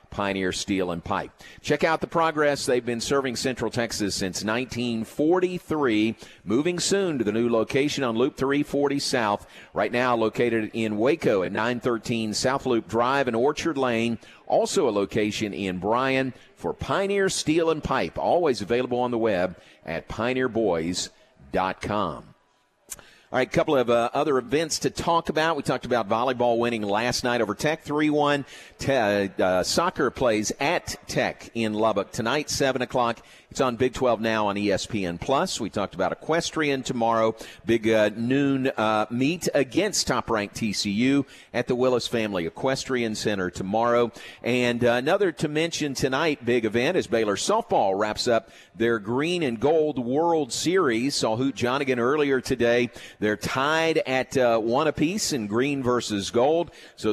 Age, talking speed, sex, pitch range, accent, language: 50-69, 155 wpm, male, 110-140 Hz, American, English